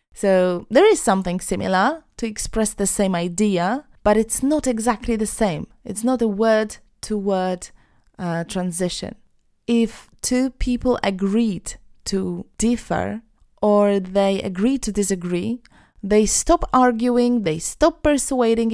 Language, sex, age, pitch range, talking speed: Polish, female, 20-39, 185-230 Hz, 125 wpm